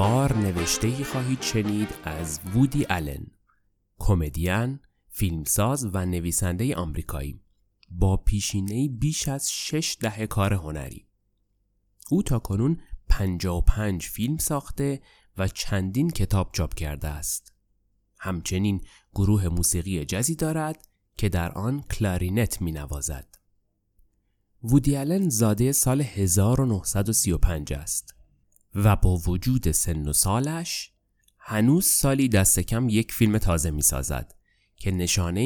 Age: 30-49